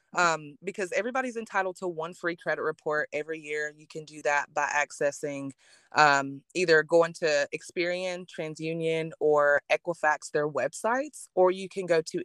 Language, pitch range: English, 155-180 Hz